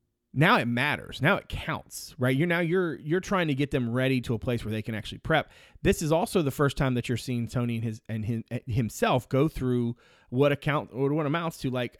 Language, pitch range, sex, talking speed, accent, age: English, 115-150 Hz, male, 240 wpm, American, 30-49